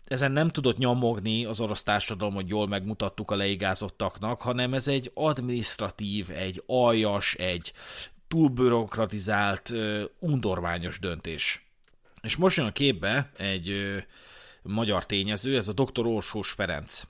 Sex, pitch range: male, 100-130 Hz